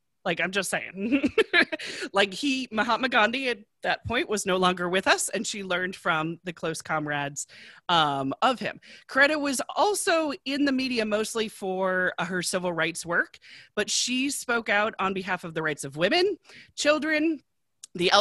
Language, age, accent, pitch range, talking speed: English, 30-49, American, 180-275 Hz, 170 wpm